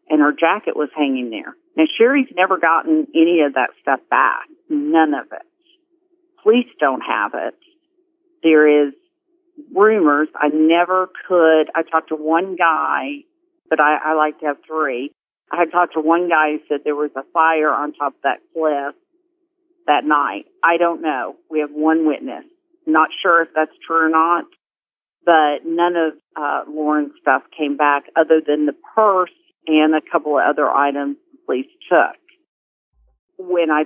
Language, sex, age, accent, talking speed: English, female, 50-69, American, 170 wpm